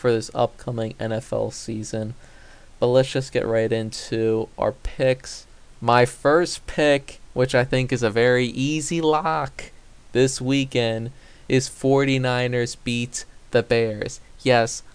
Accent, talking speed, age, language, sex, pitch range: American, 130 wpm, 20-39, English, male, 115-130 Hz